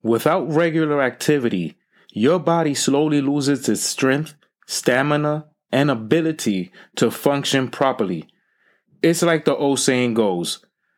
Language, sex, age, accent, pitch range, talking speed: English, male, 30-49, American, 120-160 Hz, 115 wpm